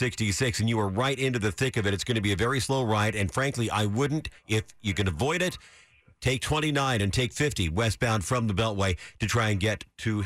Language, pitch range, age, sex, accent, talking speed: English, 110-140 Hz, 50-69, male, American, 240 wpm